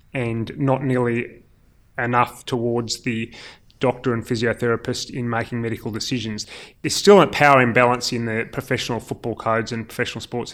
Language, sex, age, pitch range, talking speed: English, male, 30-49, 115-130 Hz, 150 wpm